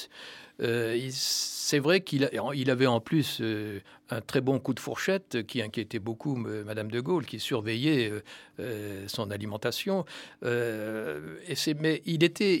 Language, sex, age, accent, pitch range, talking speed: French, male, 60-79, French, 115-150 Hz, 150 wpm